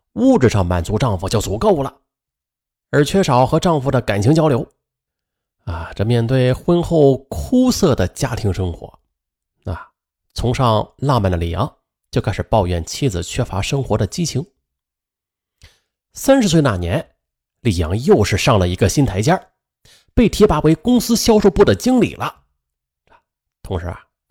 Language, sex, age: Chinese, male, 30-49